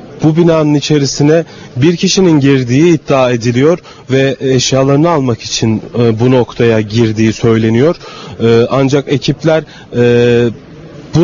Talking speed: 100 wpm